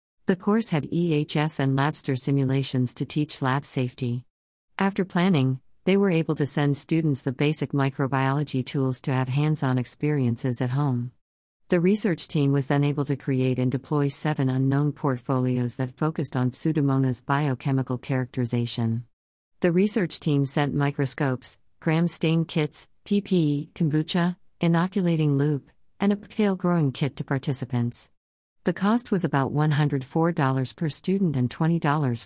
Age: 50-69